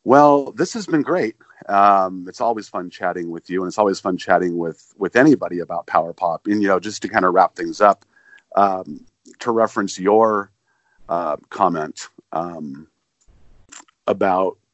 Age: 50-69